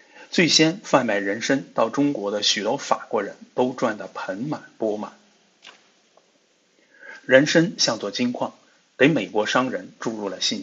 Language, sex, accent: Chinese, male, native